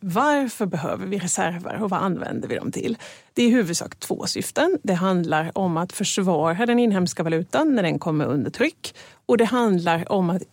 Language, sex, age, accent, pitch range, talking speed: Swedish, female, 30-49, native, 170-230 Hz, 190 wpm